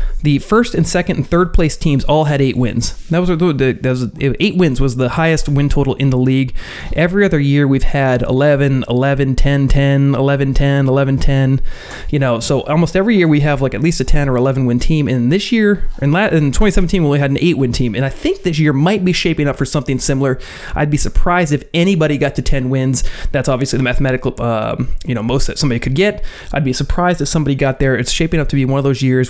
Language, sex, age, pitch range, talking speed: English, male, 30-49, 130-160 Hz, 240 wpm